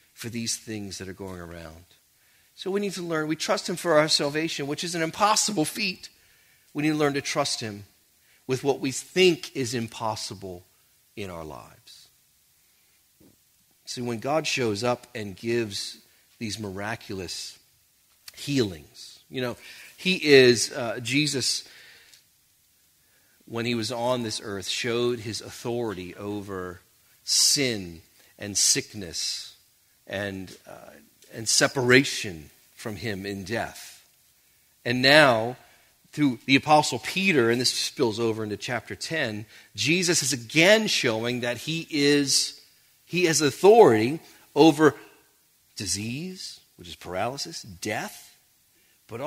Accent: American